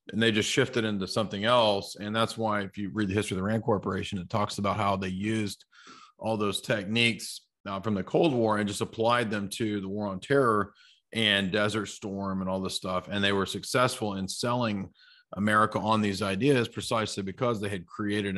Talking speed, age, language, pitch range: 205 wpm, 30-49, English, 95-110 Hz